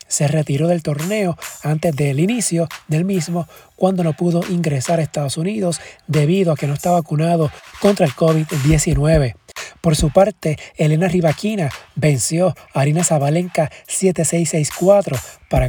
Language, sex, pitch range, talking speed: Spanish, male, 150-180 Hz, 140 wpm